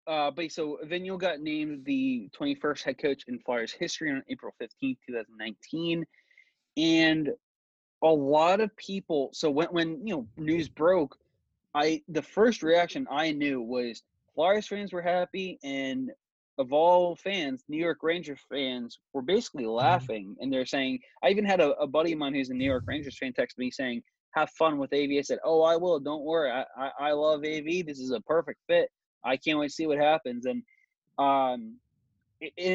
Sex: male